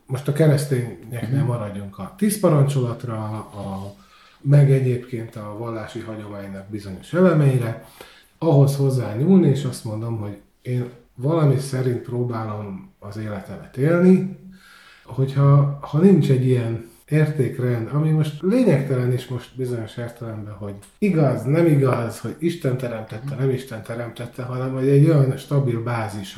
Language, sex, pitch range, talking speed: Hungarian, male, 110-145 Hz, 130 wpm